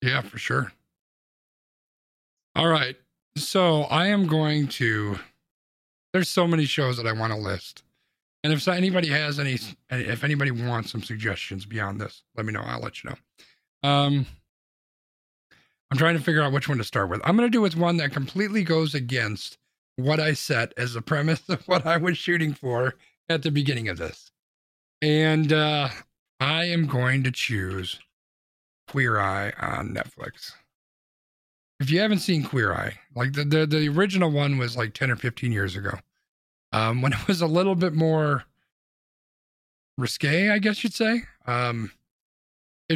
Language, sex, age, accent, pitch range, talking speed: English, male, 40-59, American, 120-160 Hz, 170 wpm